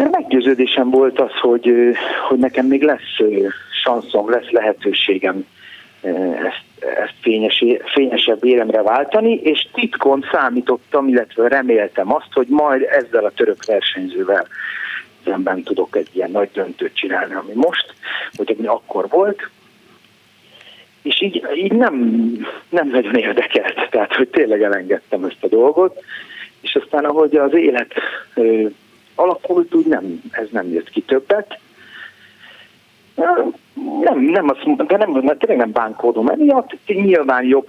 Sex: male